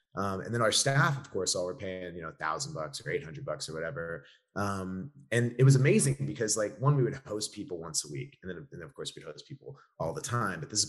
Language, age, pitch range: English, 30-49, 95-125 Hz